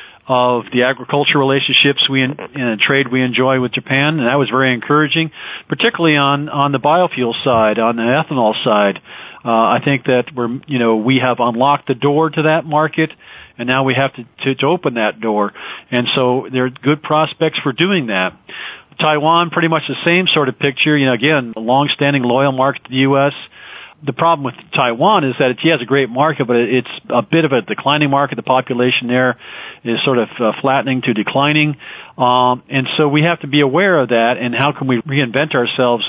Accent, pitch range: American, 125-150 Hz